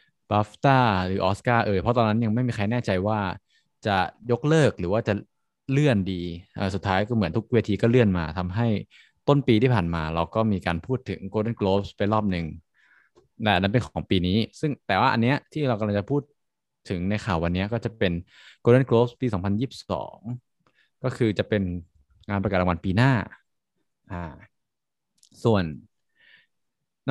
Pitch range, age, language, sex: 95-120 Hz, 20-39, Thai, male